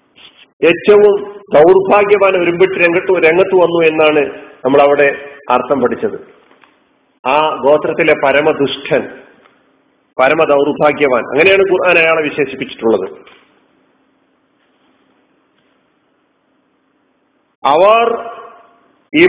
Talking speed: 65 wpm